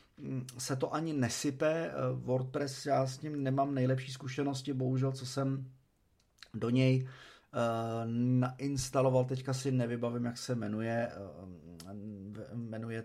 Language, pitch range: Czech, 110-125 Hz